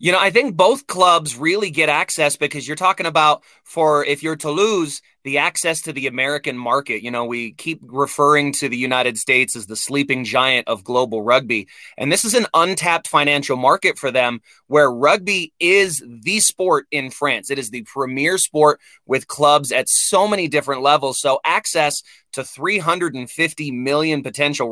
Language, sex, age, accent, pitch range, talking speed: English, male, 20-39, American, 130-165 Hz, 180 wpm